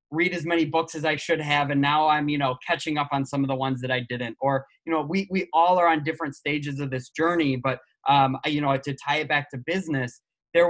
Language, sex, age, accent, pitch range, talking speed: English, male, 20-39, American, 130-165 Hz, 270 wpm